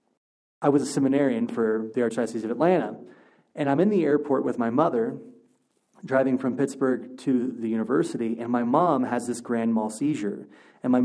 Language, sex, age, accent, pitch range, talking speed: English, male, 30-49, American, 115-140 Hz, 180 wpm